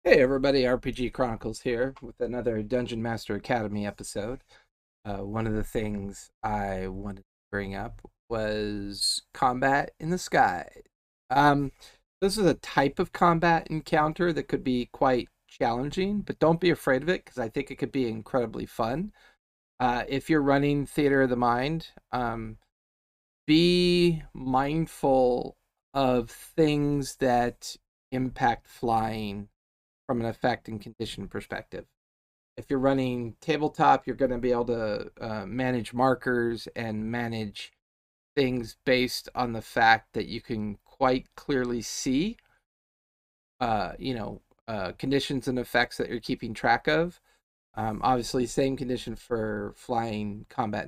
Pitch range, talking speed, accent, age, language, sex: 110-140 Hz, 140 wpm, American, 40-59, English, male